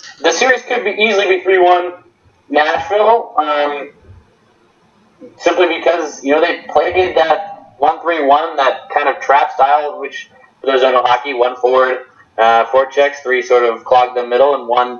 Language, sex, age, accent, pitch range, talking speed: English, male, 20-39, American, 125-170 Hz, 165 wpm